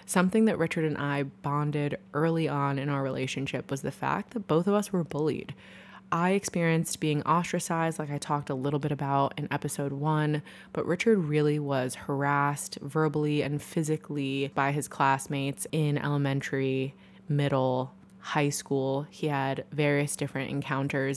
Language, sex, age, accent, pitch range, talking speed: English, female, 20-39, American, 145-170 Hz, 155 wpm